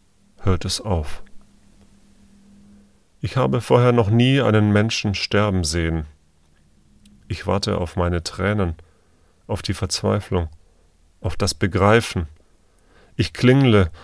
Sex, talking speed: male, 105 wpm